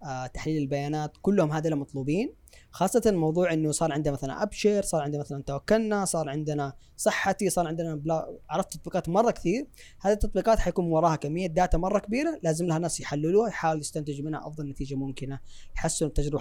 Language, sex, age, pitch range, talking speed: Arabic, female, 20-39, 145-190 Hz, 170 wpm